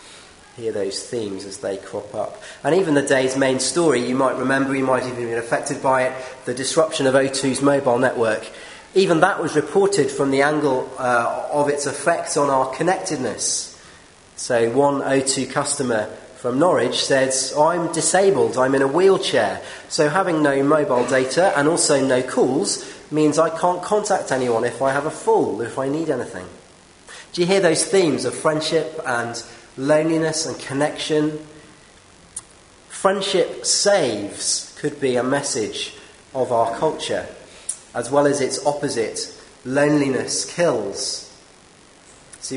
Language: English